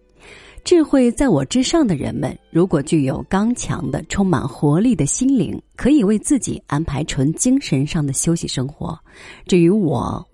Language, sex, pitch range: Chinese, female, 145-245 Hz